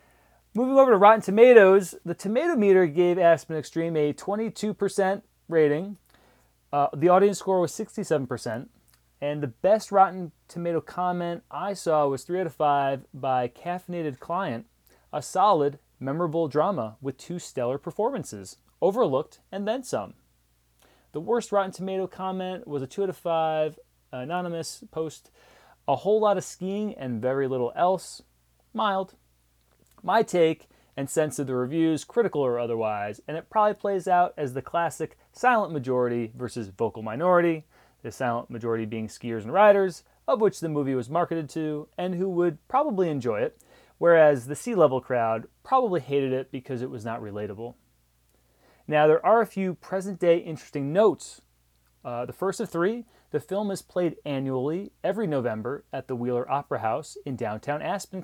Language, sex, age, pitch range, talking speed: English, male, 30-49, 125-190 Hz, 160 wpm